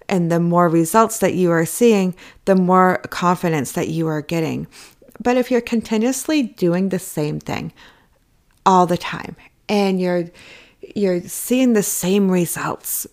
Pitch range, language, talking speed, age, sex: 175-240 Hz, English, 150 wpm, 30-49, female